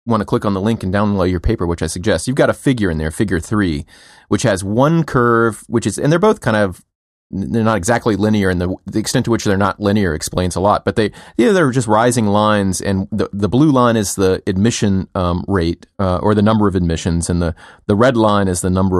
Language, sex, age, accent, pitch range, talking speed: English, male, 30-49, American, 90-110 Hz, 250 wpm